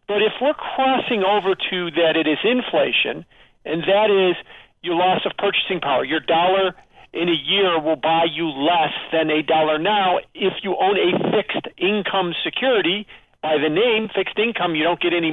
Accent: American